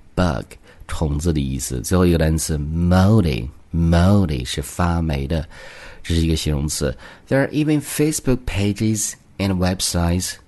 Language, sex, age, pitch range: Chinese, male, 50-69, 75-95 Hz